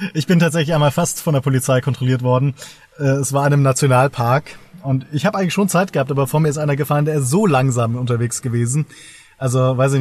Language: German